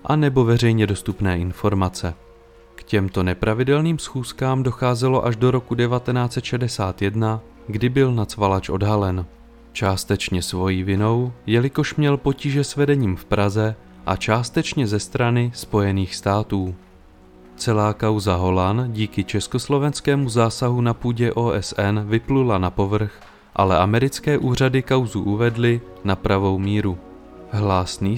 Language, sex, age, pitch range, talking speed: Czech, male, 30-49, 95-125 Hz, 115 wpm